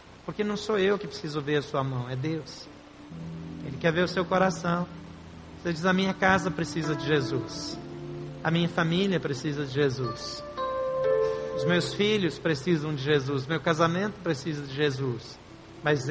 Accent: Brazilian